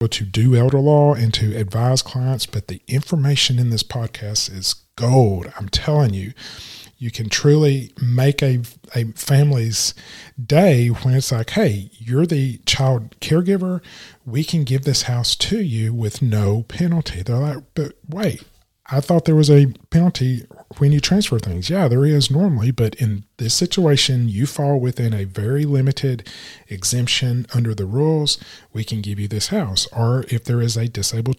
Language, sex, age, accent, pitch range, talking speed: English, male, 40-59, American, 110-140 Hz, 170 wpm